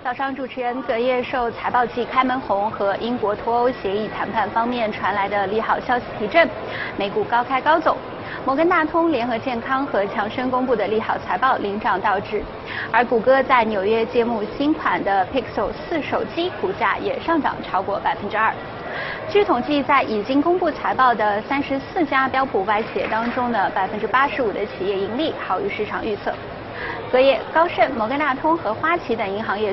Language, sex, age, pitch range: Chinese, female, 20-39, 215-275 Hz